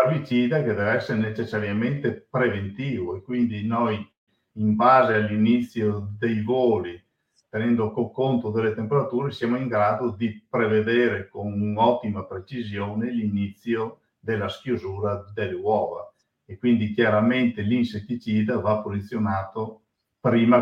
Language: Italian